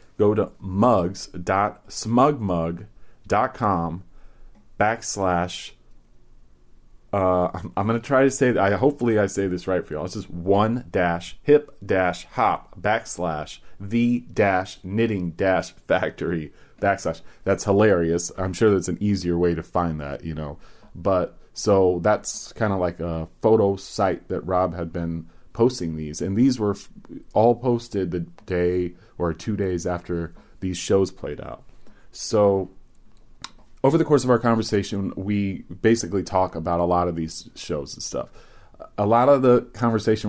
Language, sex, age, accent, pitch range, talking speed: English, male, 30-49, American, 85-110 Hz, 150 wpm